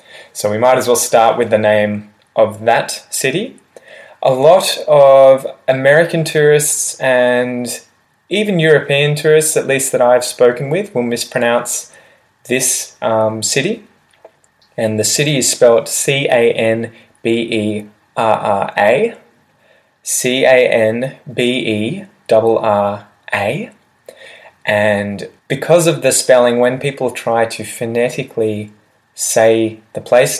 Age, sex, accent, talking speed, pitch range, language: 20-39, male, Australian, 105 wpm, 110-130 Hz, English